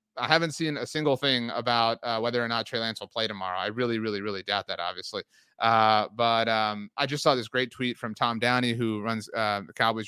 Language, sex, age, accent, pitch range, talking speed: English, male, 30-49, American, 115-140 Hz, 240 wpm